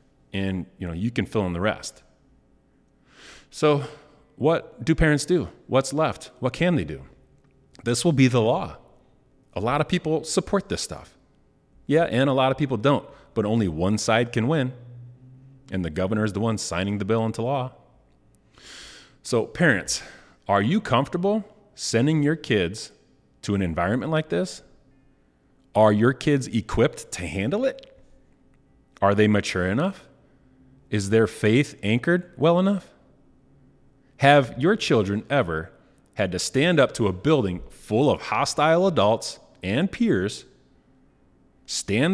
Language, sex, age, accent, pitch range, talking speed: English, male, 30-49, American, 105-145 Hz, 150 wpm